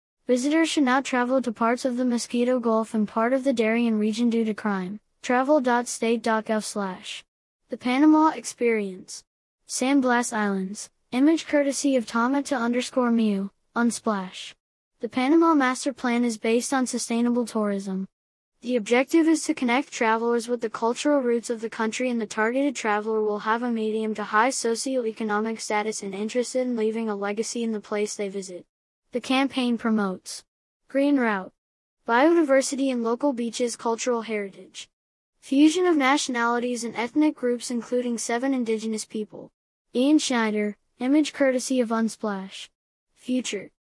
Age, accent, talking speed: 10-29, American, 145 wpm